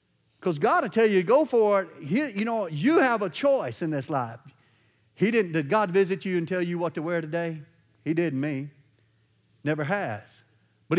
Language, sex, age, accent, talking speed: English, male, 50-69, American, 195 wpm